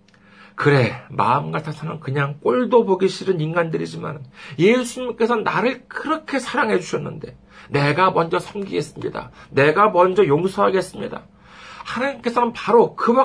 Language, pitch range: Korean, 135-210 Hz